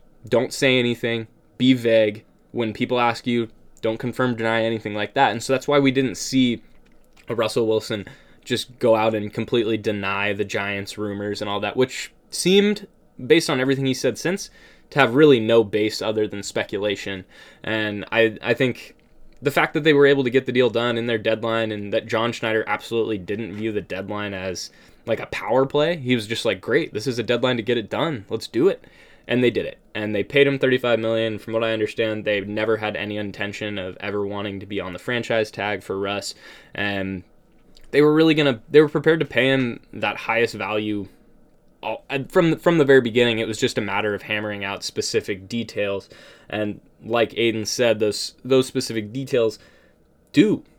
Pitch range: 105-130 Hz